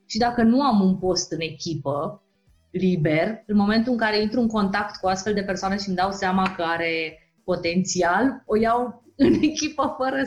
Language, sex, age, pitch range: Romanian, female, 20-39, 175-220 Hz